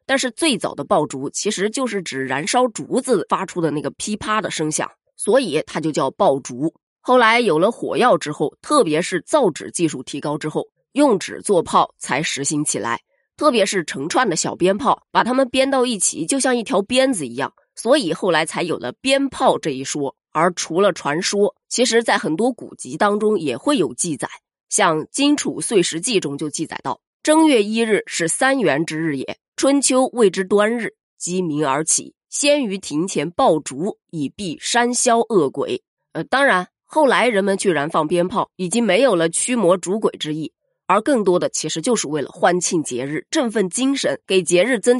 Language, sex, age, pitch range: Chinese, female, 20-39, 170-260 Hz